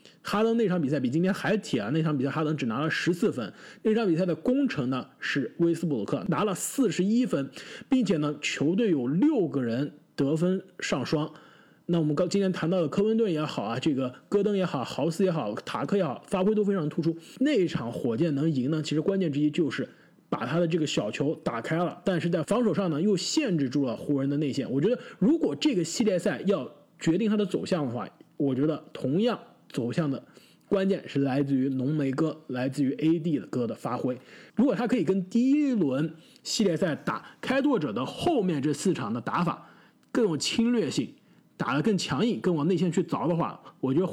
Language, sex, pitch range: Chinese, male, 145-205 Hz